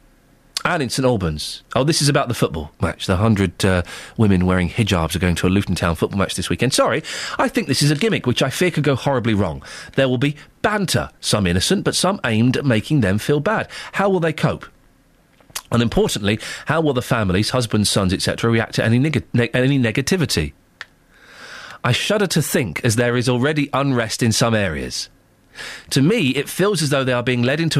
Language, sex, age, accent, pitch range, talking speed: English, male, 40-59, British, 105-160 Hz, 205 wpm